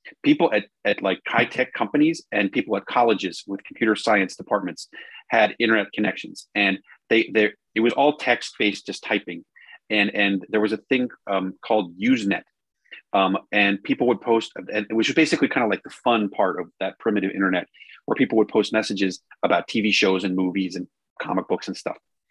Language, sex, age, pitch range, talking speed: English, male, 30-49, 100-135 Hz, 190 wpm